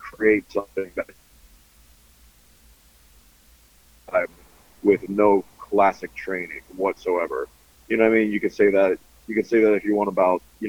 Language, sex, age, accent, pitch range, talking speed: English, male, 30-49, American, 75-105 Hz, 155 wpm